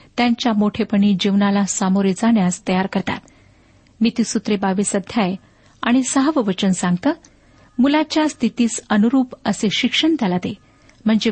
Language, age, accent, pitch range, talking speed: Marathi, 50-69, native, 195-245 Hz, 110 wpm